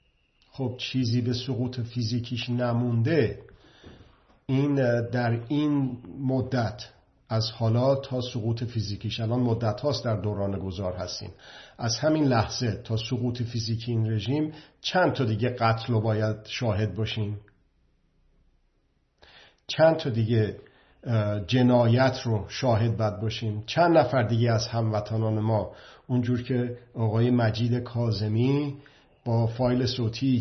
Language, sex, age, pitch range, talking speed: Persian, male, 50-69, 110-130 Hz, 120 wpm